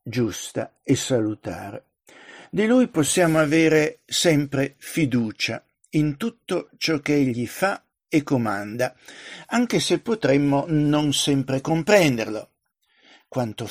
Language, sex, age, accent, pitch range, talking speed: Italian, male, 60-79, native, 130-165 Hz, 105 wpm